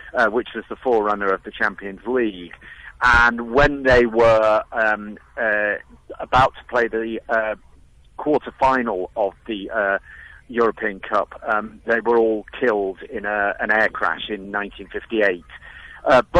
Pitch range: 105-150 Hz